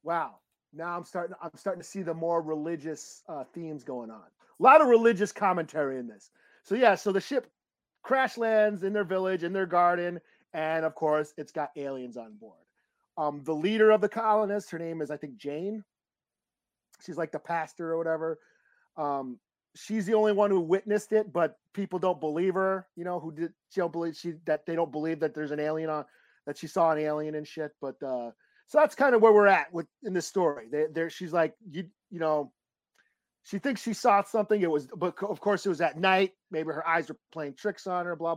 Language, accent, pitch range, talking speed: English, American, 155-200 Hz, 220 wpm